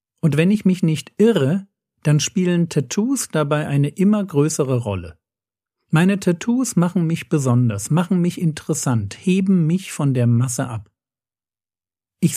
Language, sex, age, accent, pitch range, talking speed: German, male, 50-69, German, 135-180 Hz, 140 wpm